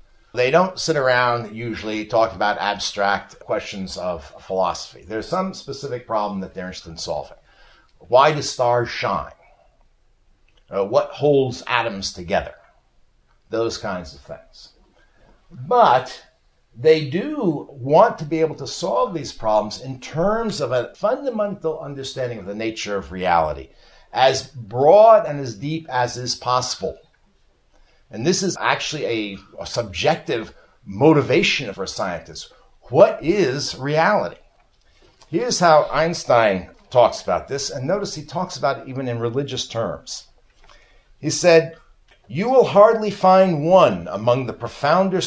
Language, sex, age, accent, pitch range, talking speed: English, male, 60-79, American, 110-160 Hz, 135 wpm